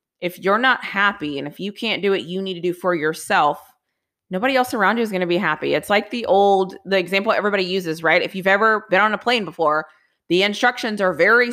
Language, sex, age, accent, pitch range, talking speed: English, female, 30-49, American, 185-230 Hz, 240 wpm